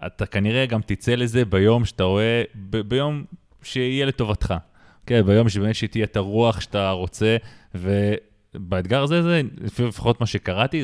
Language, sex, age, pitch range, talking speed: Hebrew, male, 20-39, 95-120 Hz, 150 wpm